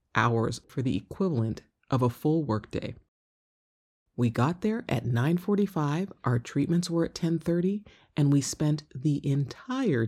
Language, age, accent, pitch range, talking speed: English, 30-49, American, 120-175 Hz, 135 wpm